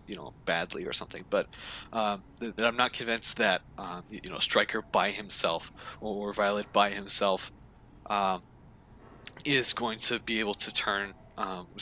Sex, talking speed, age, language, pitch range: male, 160 wpm, 20-39, English, 100-120 Hz